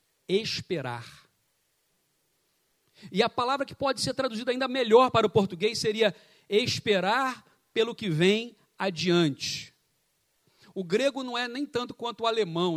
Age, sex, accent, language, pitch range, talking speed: 40-59, male, Brazilian, Portuguese, 185-245 Hz, 130 wpm